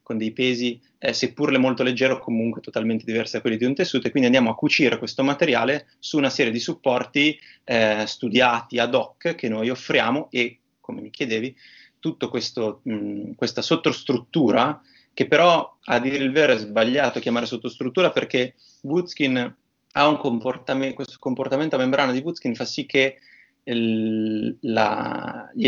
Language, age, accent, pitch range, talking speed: Italian, 30-49, native, 115-135 Hz, 160 wpm